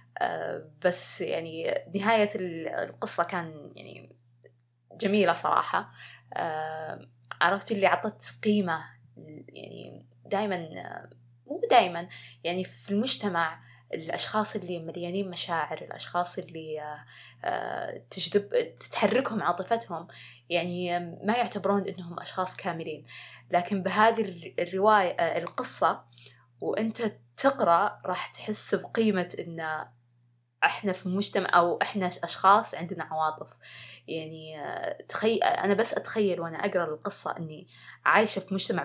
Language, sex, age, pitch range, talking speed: Arabic, female, 20-39, 160-205 Hz, 105 wpm